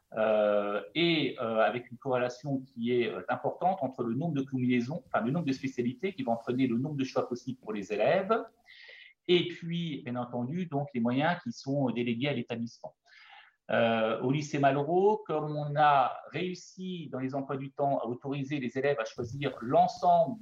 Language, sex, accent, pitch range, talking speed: French, male, French, 125-175 Hz, 180 wpm